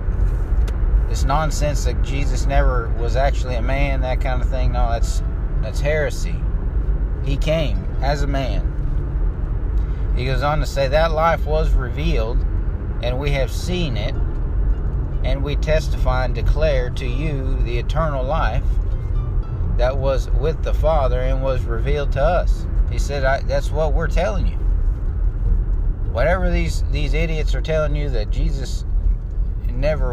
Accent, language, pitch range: American, English, 95-120 Hz